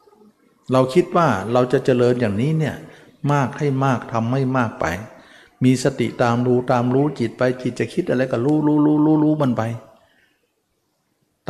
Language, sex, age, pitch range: Thai, male, 60-79, 110-145 Hz